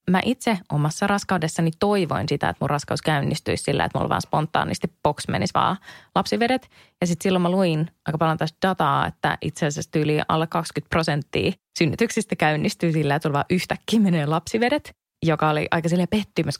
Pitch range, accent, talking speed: 155-195 Hz, native, 180 wpm